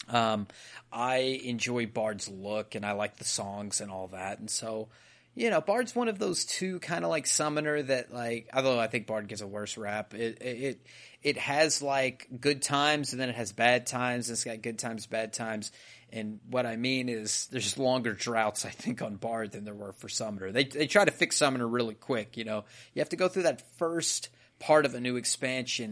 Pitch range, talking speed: 105-130 Hz, 220 wpm